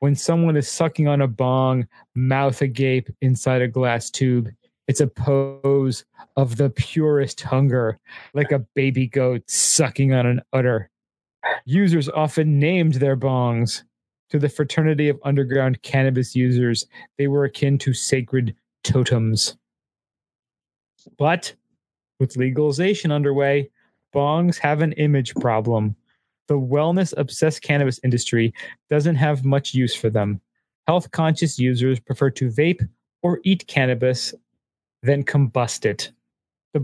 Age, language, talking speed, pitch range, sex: 30-49, English, 125 wpm, 125-150 Hz, male